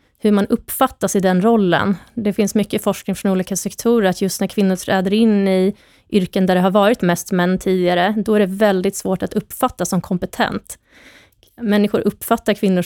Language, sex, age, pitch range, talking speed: Swedish, female, 20-39, 185-215 Hz, 185 wpm